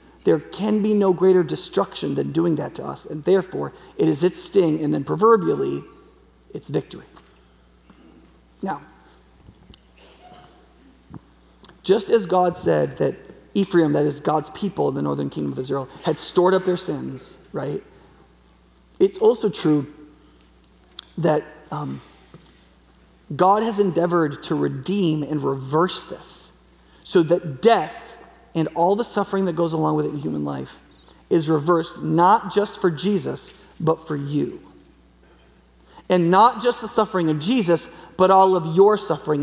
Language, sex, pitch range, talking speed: English, male, 150-195 Hz, 140 wpm